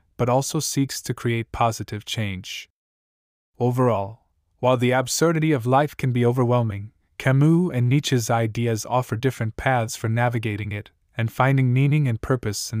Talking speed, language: 150 wpm, English